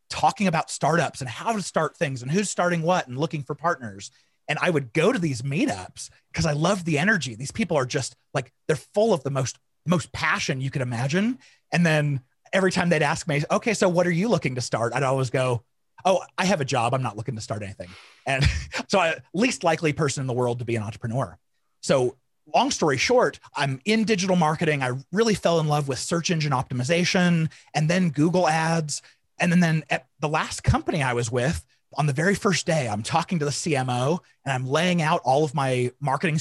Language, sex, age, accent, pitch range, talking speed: English, male, 30-49, American, 130-175 Hz, 220 wpm